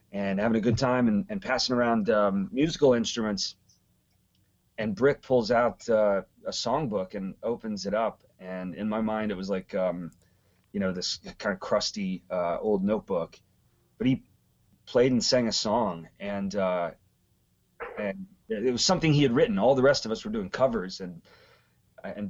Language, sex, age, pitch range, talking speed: English, male, 30-49, 95-125 Hz, 180 wpm